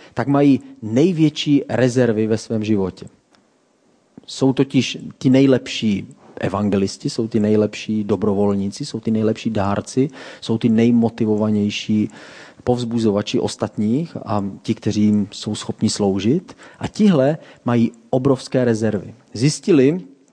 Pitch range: 105-130 Hz